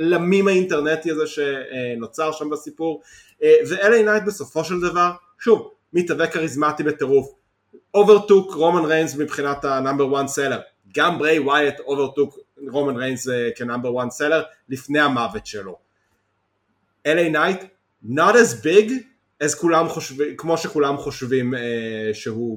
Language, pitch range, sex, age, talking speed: Hebrew, 135-175 Hz, male, 20-39, 110 wpm